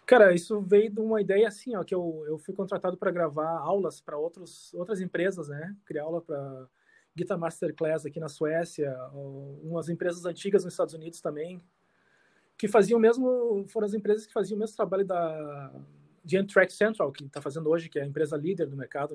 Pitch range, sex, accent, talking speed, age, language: 160-210 Hz, male, Brazilian, 195 wpm, 20-39, Portuguese